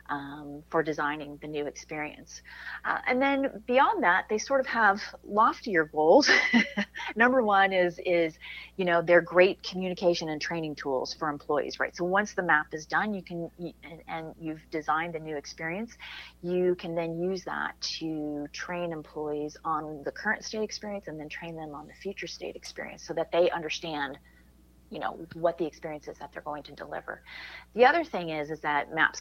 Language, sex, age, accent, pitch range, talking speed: English, female, 30-49, American, 150-185 Hz, 185 wpm